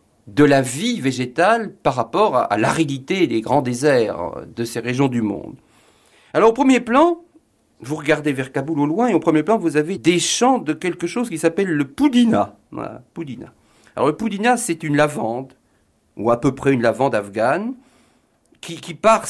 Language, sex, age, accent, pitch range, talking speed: French, male, 50-69, French, 130-195 Hz, 185 wpm